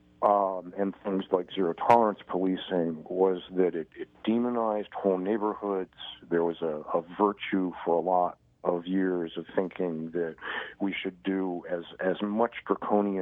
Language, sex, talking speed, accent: English, male, 150 wpm, American